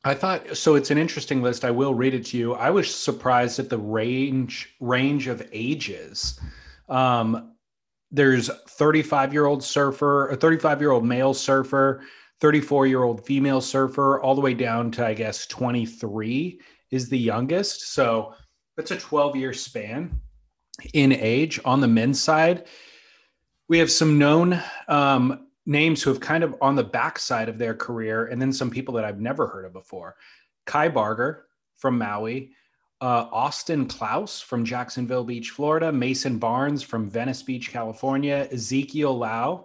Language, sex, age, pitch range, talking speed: English, male, 30-49, 120-145 Hz, 160 wpm